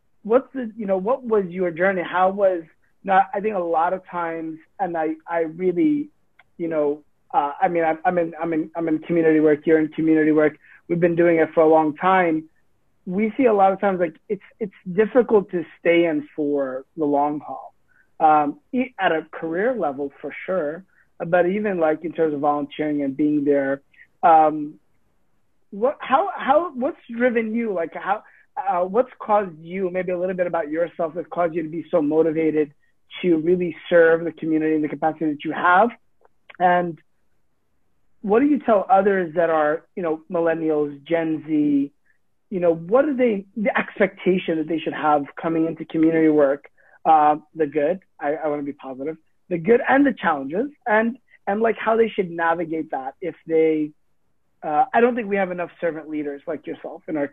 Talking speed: 190 wpm